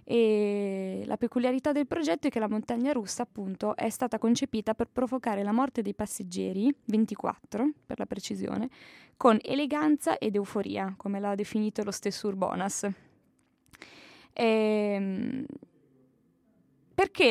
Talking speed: 120 wpm